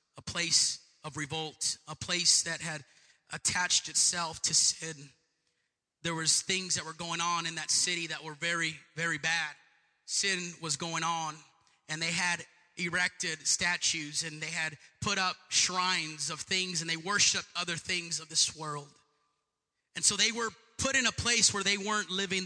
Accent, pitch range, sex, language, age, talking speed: American, 150-175 Hz, male, English, 30-49, 170 wpm